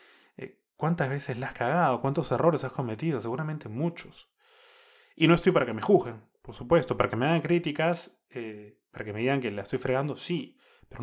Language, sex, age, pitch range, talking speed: Spanish, male, 20-39, 120-155 Hz, 195 wpm